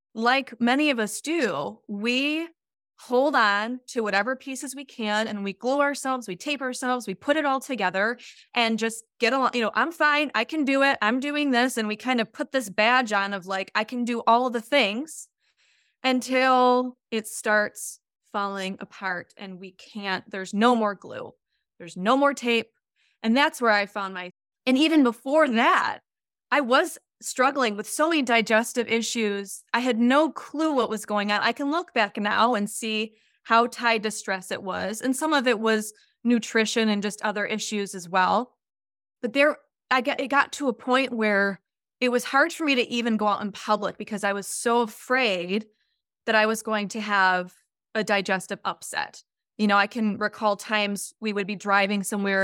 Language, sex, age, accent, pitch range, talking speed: English, female, 20-39, American, 205-260 Hz, 195 wpm